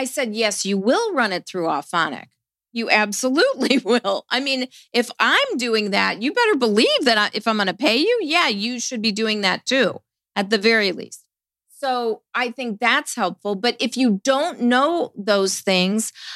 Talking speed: 185 wpm